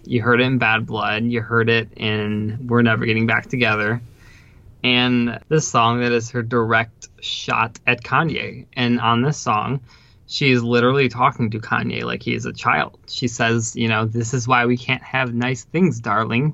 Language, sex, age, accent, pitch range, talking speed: English, male, 20-39, American, 115-125 Hz, 190 wpm